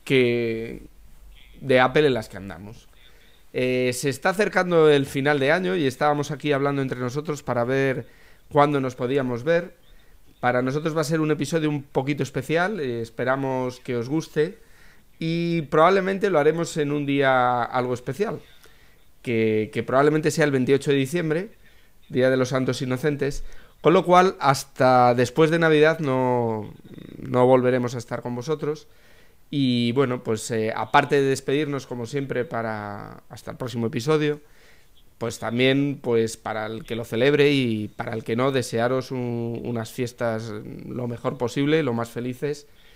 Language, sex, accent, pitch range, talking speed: English, male, Spanish, 115-145 Hz, 160 wpm